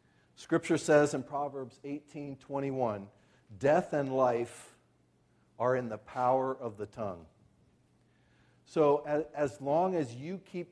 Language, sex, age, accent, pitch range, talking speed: English, male, 40-59, American, 125-165 Hz, 125 wpm